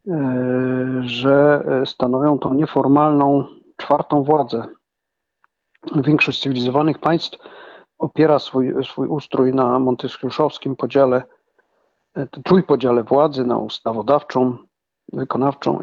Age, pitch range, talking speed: 50-69, 130-150 Hz, 80 wpm